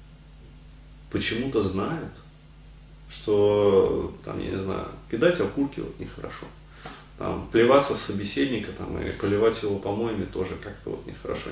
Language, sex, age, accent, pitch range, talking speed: Russian, male, 30-49, native, 105-145 Hz, 125 wpm